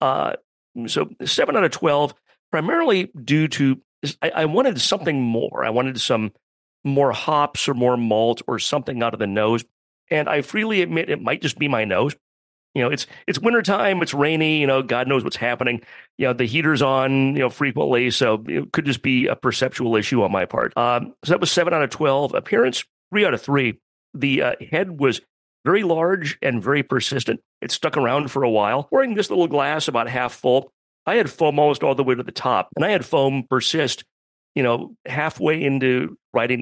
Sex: male